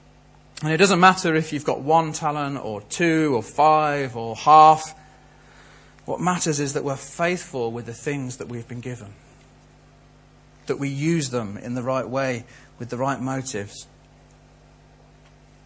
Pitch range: 125-170 Hz